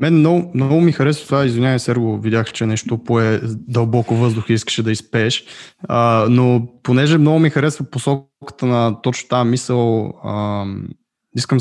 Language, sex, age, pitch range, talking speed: Bulgarian, male, 20-39, 115-145 Hz, 160 wpm